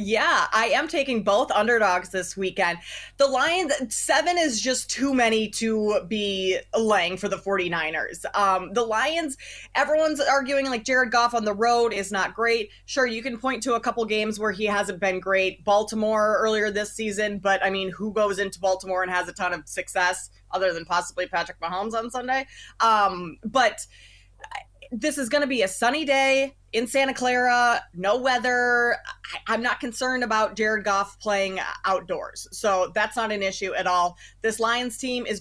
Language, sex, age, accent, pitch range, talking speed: English, female, 20-39, American, 195-250 Hz, 180 wpm